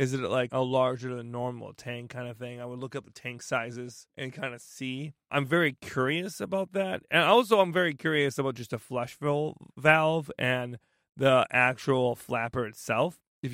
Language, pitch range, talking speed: English, 125-160 Hz, 195 wpm